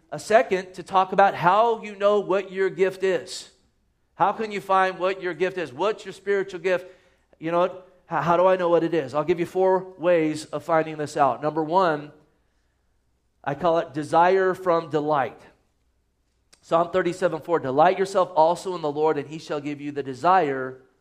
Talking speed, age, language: 185 wpm, 40-59, English